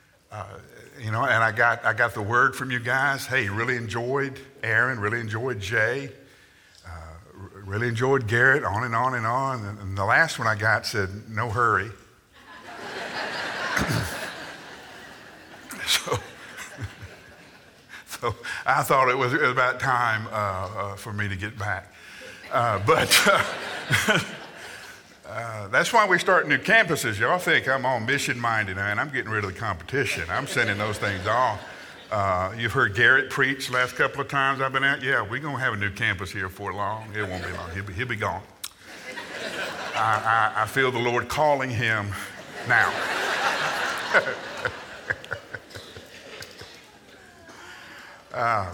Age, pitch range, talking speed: 50-69, 105-135 Hz, 155 wpm